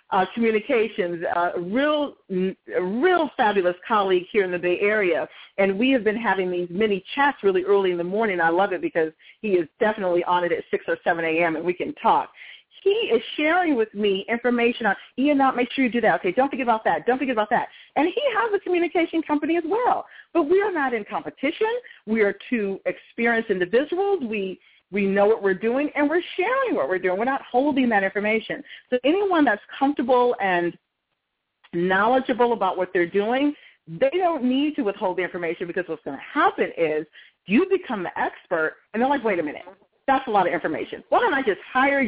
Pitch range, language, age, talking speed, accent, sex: 195-295 Hz, English, 40-59, 205 wpm, American, female